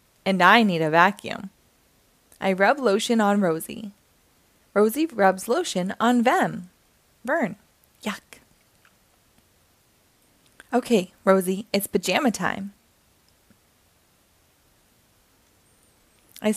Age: 20-39